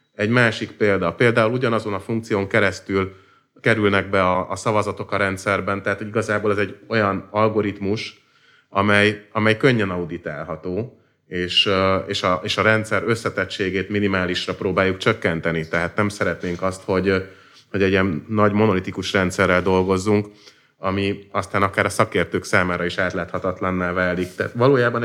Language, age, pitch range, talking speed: Hungarian, 30-49, 95-110 Hz, 140 wpm